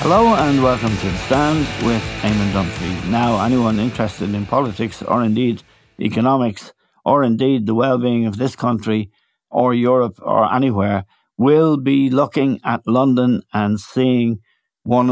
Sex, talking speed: male, 145 wpm